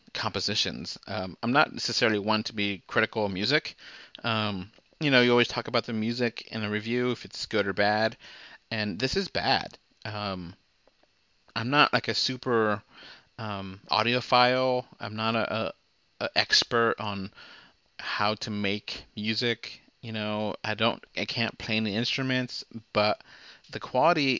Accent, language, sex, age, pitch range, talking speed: American, English, male, 30-49, 105-125 Hz, 155 wpm